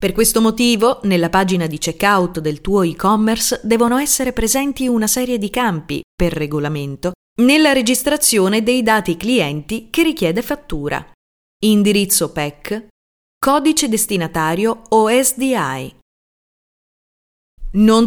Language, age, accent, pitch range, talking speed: Italian, 30-49, native, 170-240 Hz, 115 wpm